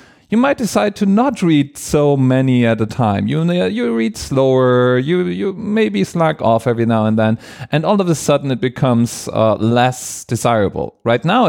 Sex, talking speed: male, 190 wpm